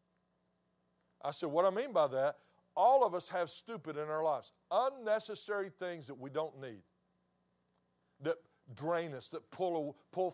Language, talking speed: English, 155 wpm